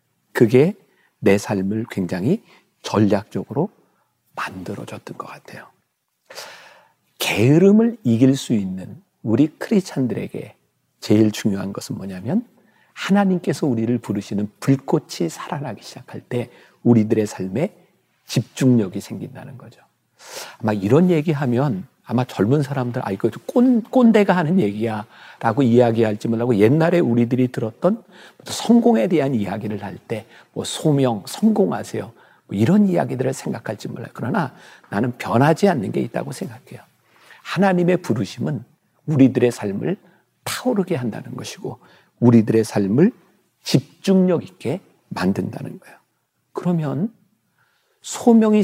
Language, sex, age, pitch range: Korean, male, 40-59, 110-185 Hz